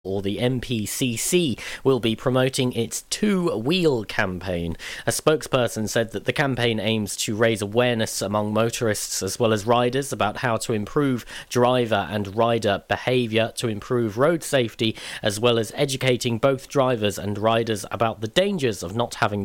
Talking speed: 155 wpm